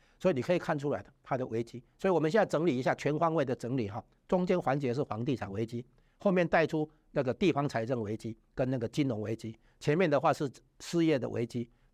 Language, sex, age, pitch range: Chinese, male, 50-69, 115-150 Hz